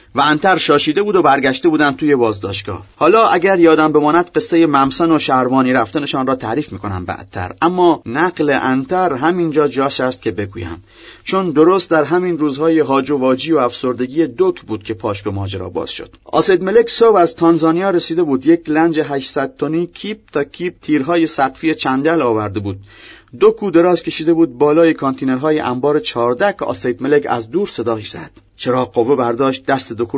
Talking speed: 175 wpm